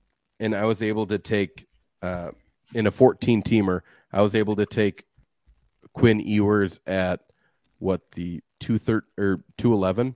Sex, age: male, 30-49